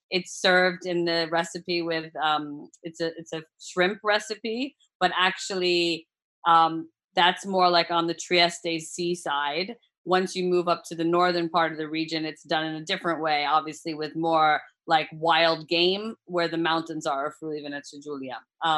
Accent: American